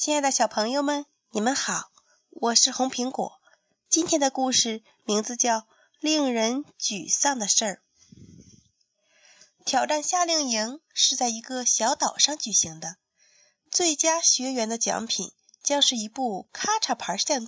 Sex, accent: female, native